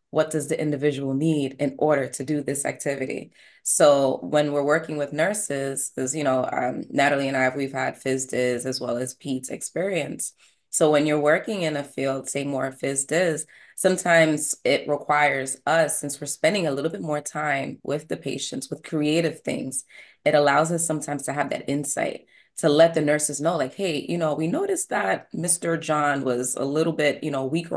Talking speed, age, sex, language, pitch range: 190 wpm, 20-39, female, English, 135-155 Hz